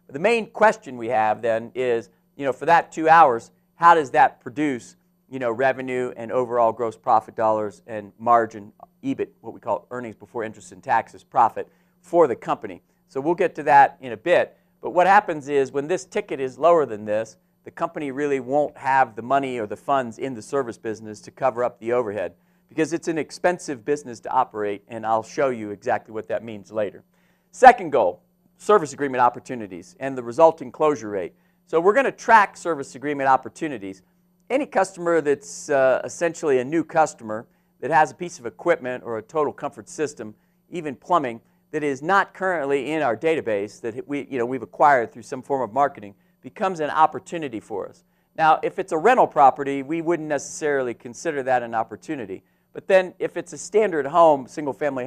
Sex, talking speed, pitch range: male, 195 wpm, 120-170 Hz